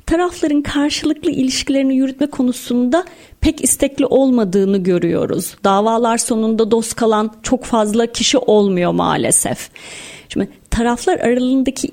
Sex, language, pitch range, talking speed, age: female, Turkish, 210-265 Hz, 105 wpm, 40-59